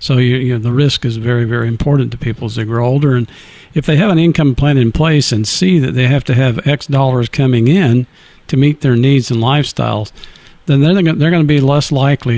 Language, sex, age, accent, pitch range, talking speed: English, male, 50-69, American, 110-135 Hz, 240 wpm